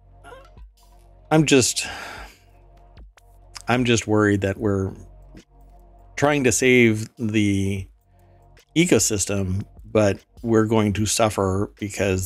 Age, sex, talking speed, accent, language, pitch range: 50-69, male, 90 wpm, American, English, 95-115 Hz